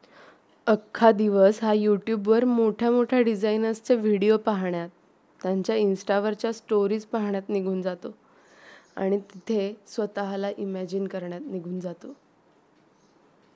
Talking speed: 95 wpm